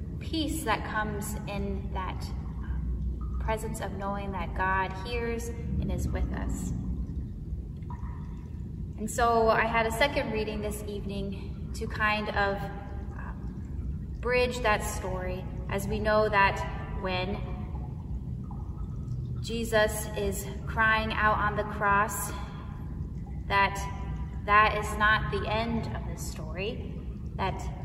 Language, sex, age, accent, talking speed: English, female, 10-29, American, 110 wpm